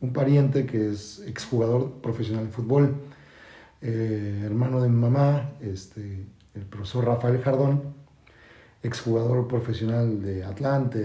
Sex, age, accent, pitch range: male, 40-59, Mexican, 110-140 Hz